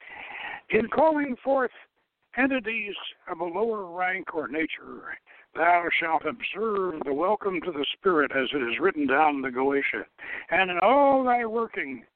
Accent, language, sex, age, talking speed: American, English, male, 60-79, 155 wpm